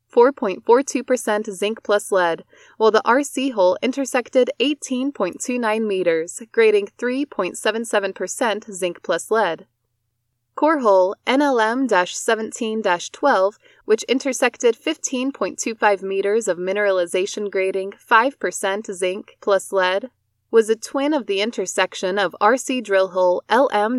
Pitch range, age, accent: 190-250 Hz, 20-39, American